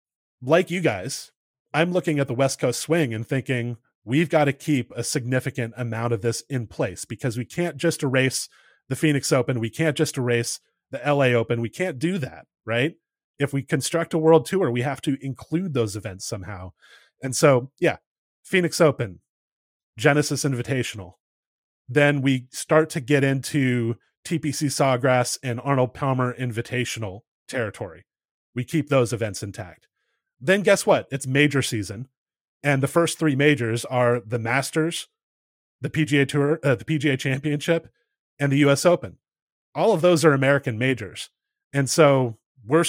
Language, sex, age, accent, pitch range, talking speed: English, male, 30-49, American, 120-150 Hz, 160 wpm